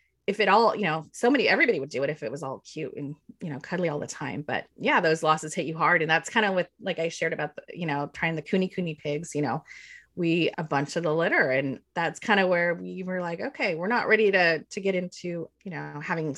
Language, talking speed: English, 270 wpm